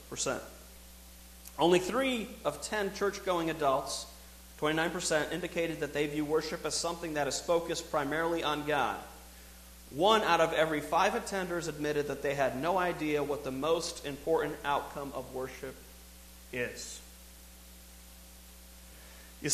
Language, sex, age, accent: English, male, 40-59, American